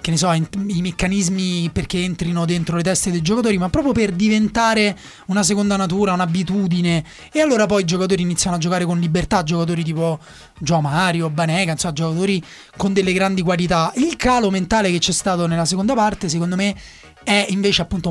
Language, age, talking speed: Italian, 30-49, 180 wpm